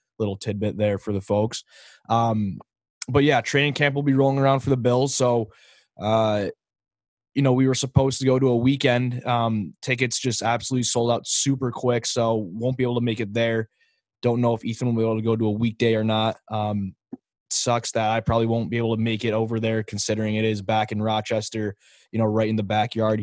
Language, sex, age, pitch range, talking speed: English, male, 20-39, 110-125 Hz, 220 wpm